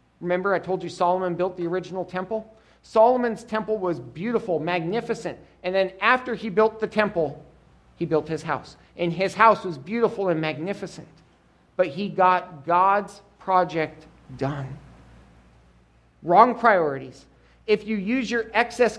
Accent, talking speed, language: American, 140 wpm, English